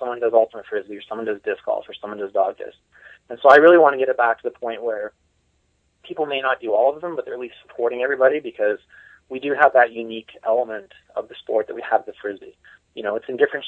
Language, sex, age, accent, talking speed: English, male, 20-39, American, 265 wpm